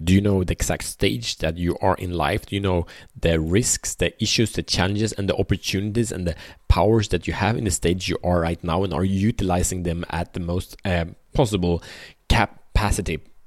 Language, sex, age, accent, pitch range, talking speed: Swedish, male, 30-49, Norwegian, 90-110 Hz, 210 wpm